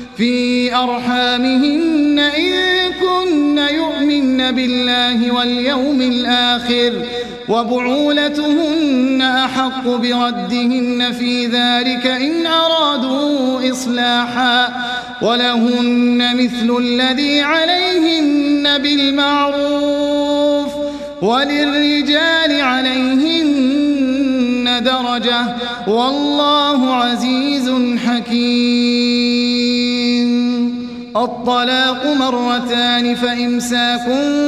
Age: 30-49